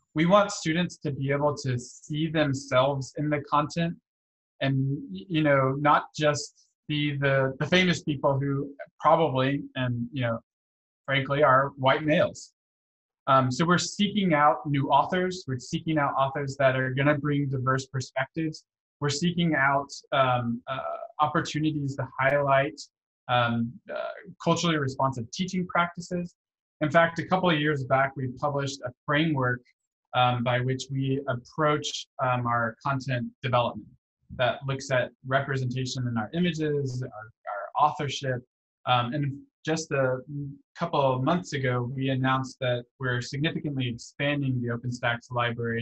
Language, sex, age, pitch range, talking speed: English, male, 20-39, 120-150 Hz, 145 wpm